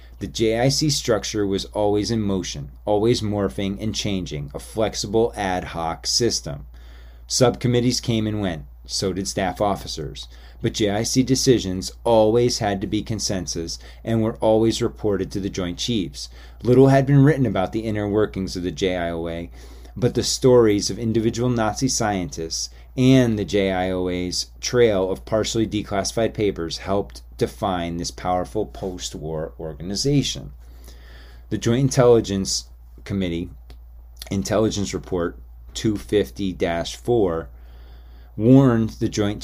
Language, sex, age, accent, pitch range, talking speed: English, male, 30-49, American, 80-110 Hz, 125 wpm